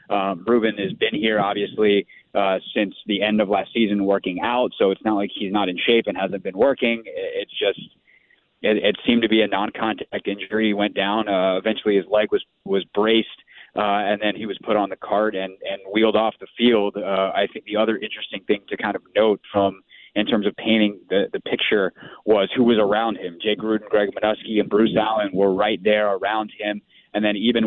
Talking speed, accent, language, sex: 220 wpm, American, English, male